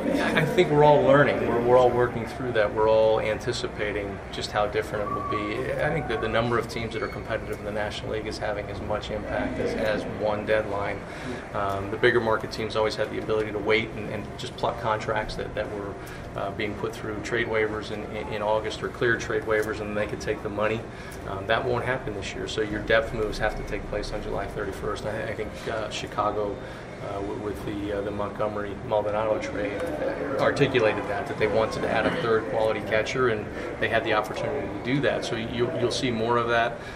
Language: English